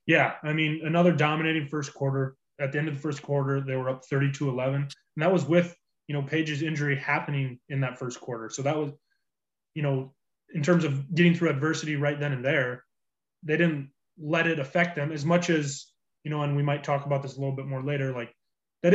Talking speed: 220 wpm